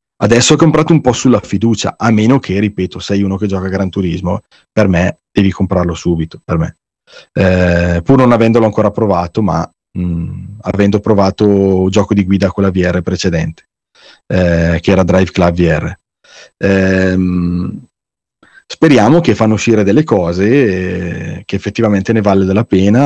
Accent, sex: native, male